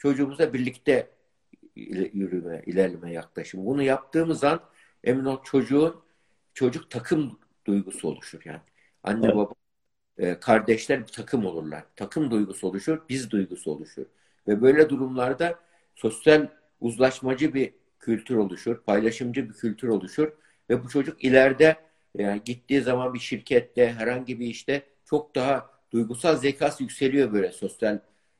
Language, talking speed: Turkish, 120 wpm